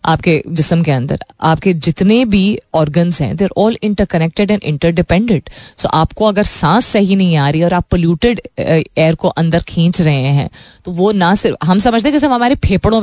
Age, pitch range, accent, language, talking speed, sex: 20-39, 155-205 Hz, native, Hindi, 195 wpm, female